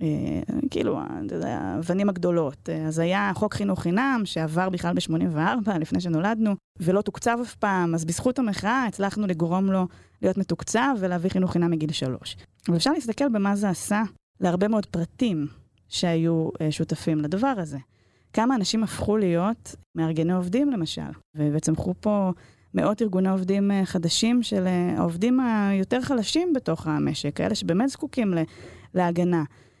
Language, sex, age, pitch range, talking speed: Hebrew, female, 20-39, 165-235 Hz, 135 wpm